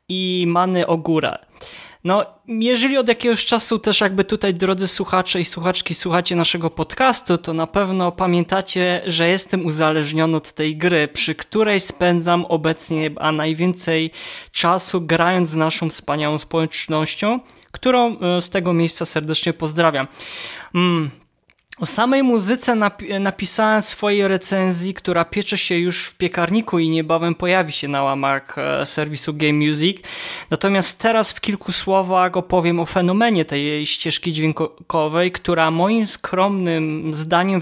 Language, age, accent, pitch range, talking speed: Polish, 20-39, native, 160-190 Hz, 135 wpm